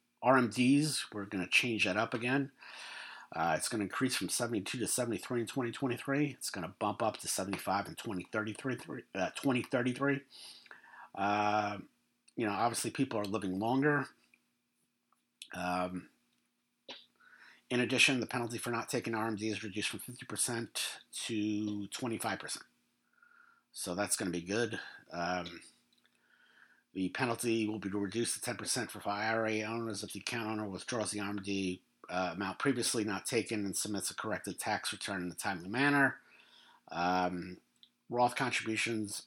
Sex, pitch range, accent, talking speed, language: male, 95-125 Hz, American, 150 wpm, English